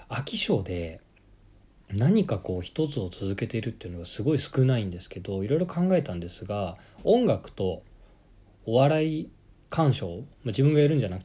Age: 20-39